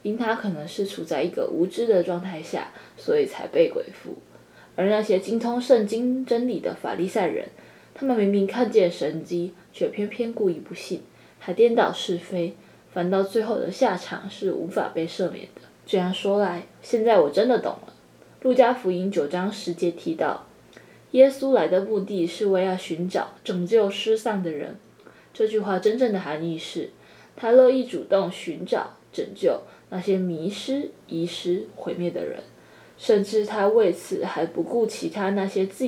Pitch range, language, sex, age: 180-235 Hz, Chinese, female, 20-39